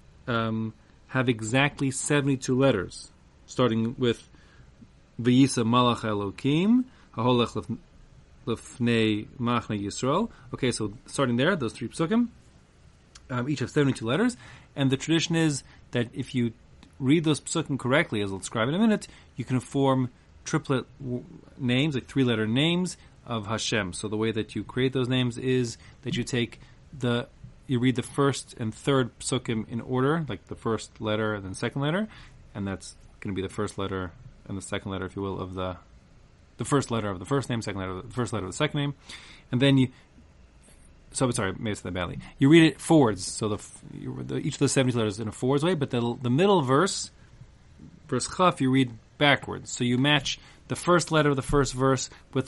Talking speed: 185 wpm